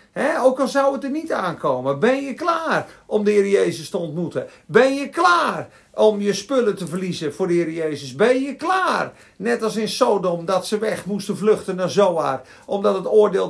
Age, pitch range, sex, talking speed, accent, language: 50-69, 195-255 Hz, male, 205 wpm, Dutch, Dutch